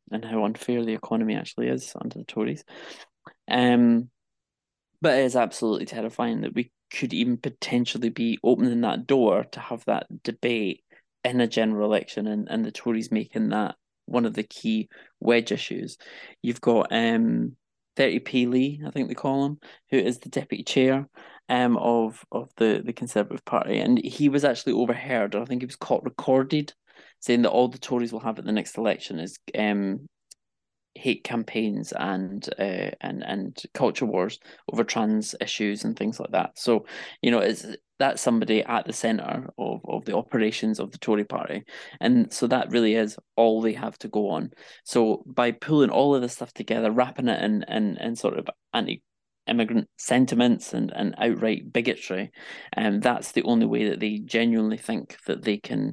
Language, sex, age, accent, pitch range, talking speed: English, male, 20-39, British, 110-135 Hz, 180 wpm